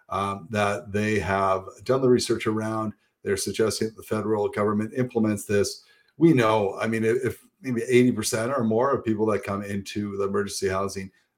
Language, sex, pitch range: English, male, 100-120 Hz